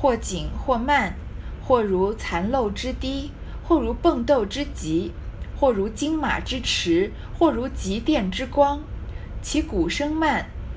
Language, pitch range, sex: Chinese, 175-295 Hz, female